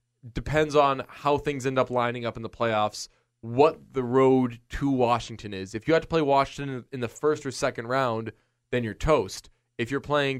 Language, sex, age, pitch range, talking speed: English, male, 20-39, 115-140 Hz, 200 wpm